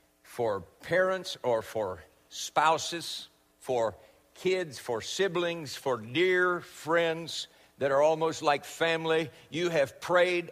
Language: English